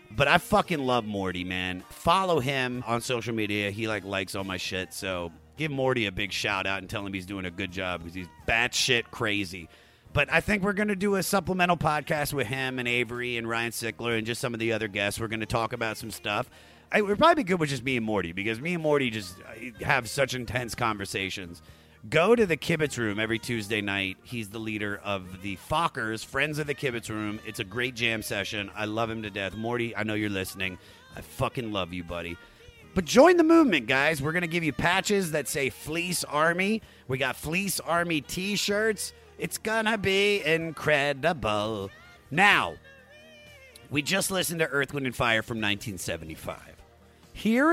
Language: English